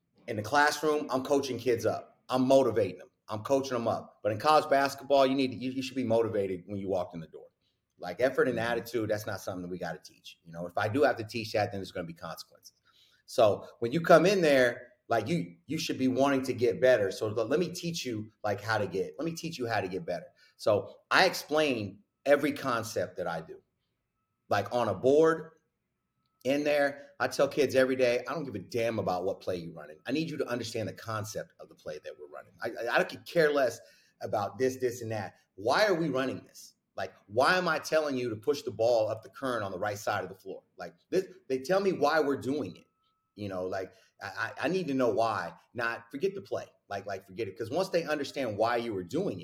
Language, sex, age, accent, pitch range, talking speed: English, male, 30-49, American, 105-145 Hz, 245 wpm